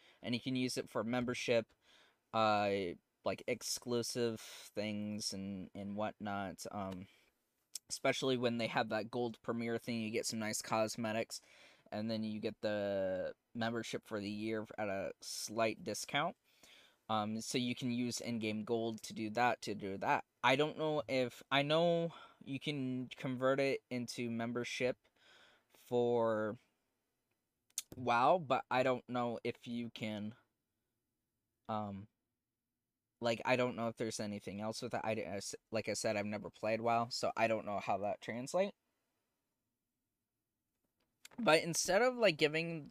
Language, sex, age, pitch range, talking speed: English, male, 20-39, 110-135 Hz, 150 wpm